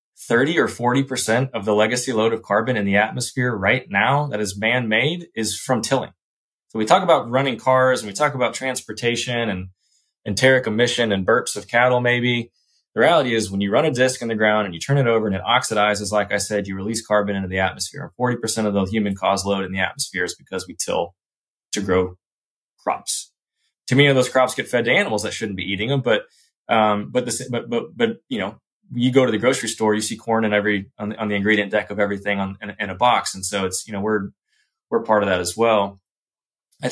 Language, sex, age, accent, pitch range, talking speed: English, male, 20-39, American, 105-125 Hz, 230 wpm